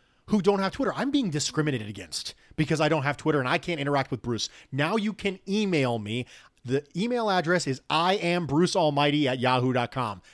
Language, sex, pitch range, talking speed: English, male, 125-190 Hz, 195 wpm